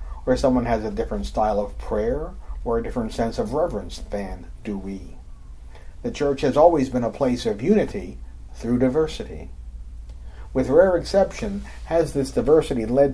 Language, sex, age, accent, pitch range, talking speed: English, male, 50-69, American, 90-140 Hz, 160 wpm